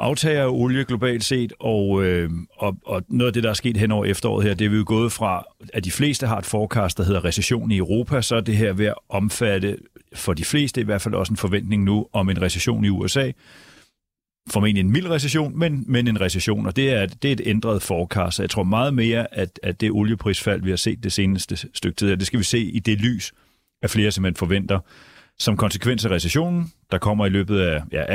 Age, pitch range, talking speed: 40-59, 95-115 Hz, 235 wpm